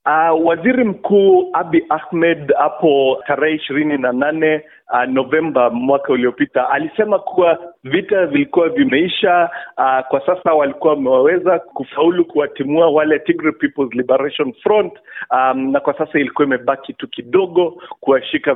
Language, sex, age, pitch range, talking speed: Swahili, male, 50-69, 130-195 Hz, 125 wpm